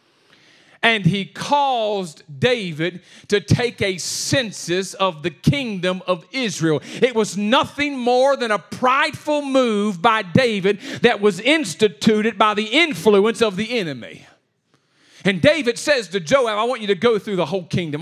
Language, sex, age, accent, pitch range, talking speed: English, male, 40-59, American, 170-250 Hz, 155 wpm